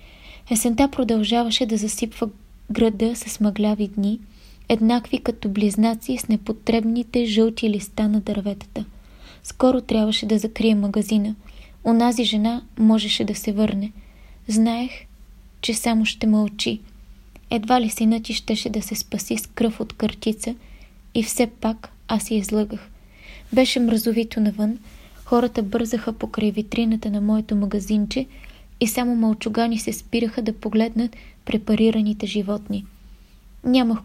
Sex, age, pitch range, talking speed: female, 20-39, 215-235 Hz, 125 wpm